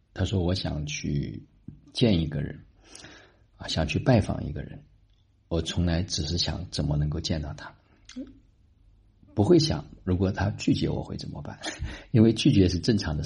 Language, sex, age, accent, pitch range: Chinese, male, 50-69, native, 75-95 Hz